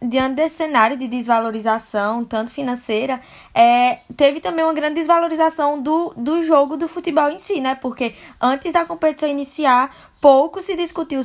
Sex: female